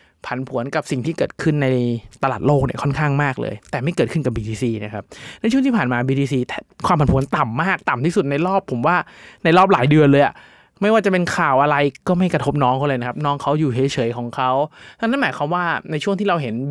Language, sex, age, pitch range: Thai, male, 20-39, 125-155 Hz